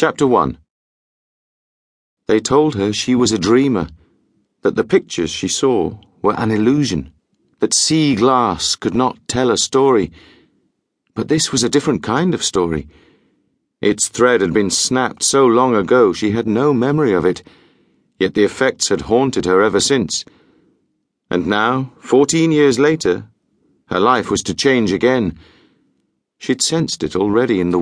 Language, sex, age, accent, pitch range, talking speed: English, male, 40-59, British, 95-145 Hz, 155 wpm